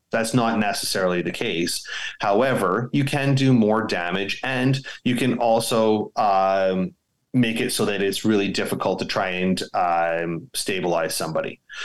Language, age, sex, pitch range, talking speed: English, 30-49, male, 100-120 Hz, 145 wpm